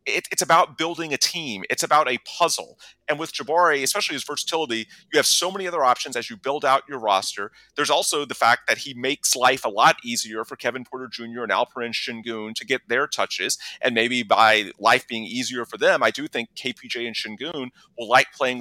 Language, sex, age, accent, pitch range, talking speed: English, male, 30-49, American, 120-165 Hz, 215 wpm